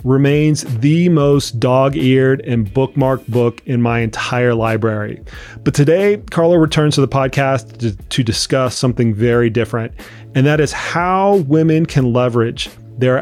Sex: male